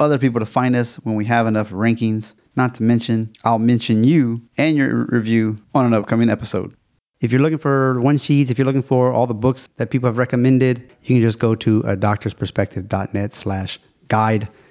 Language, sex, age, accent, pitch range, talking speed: English, male, 30-49, American, 110-140 Hz, 190 wpm